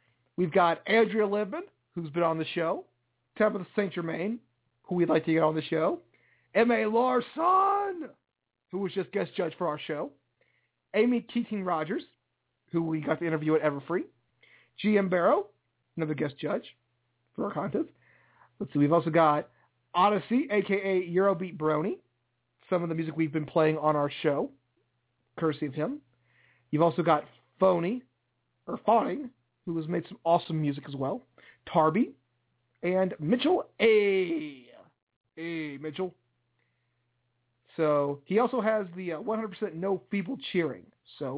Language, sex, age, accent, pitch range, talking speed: English, male, 40-59, American, 145-210 Hz, 145 wpm